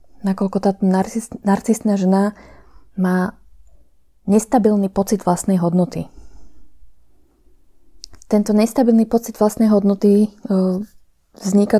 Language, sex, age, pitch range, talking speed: Slovak, female, 20-39, 185-210 Hz, 80 wpm